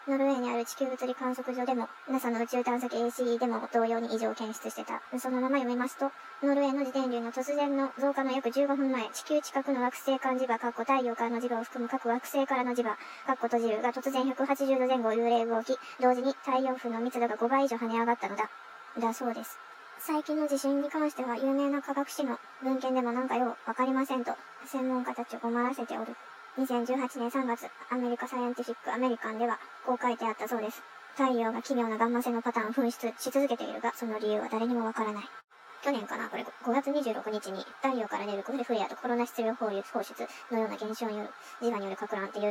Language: Japanese